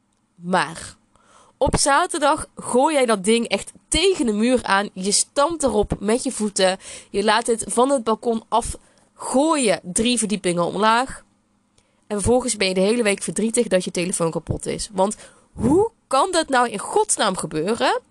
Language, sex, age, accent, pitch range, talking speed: Dutch, female, 20-39, Dutch, 190-245 Hz, 170 wpm